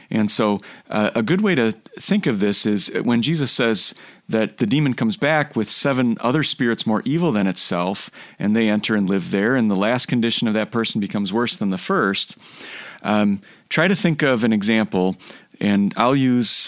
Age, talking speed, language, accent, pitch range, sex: 40-59, 200 wpm, English, American, 105-130 Hz, male